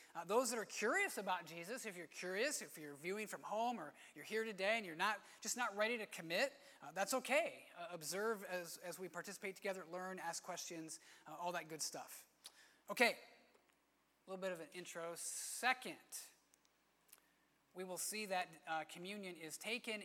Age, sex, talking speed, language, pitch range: 30-49, male, 185 wpm, English, 170-220 Hz